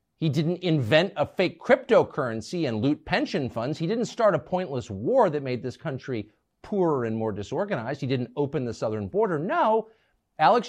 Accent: American